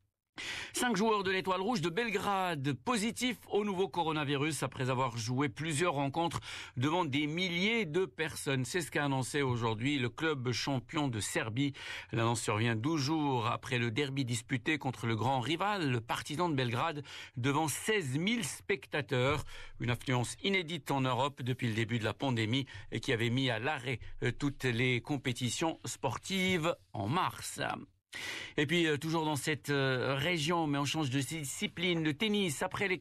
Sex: male